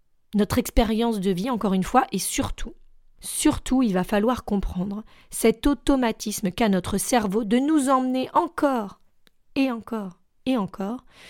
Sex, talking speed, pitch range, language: female, 145 wpm, 200-255 Hz, French